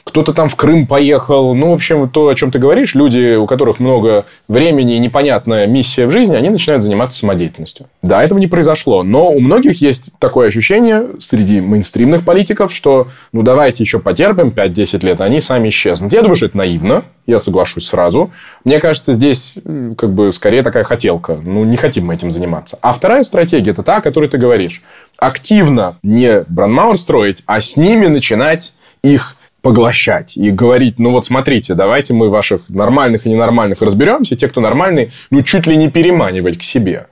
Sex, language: male, Russian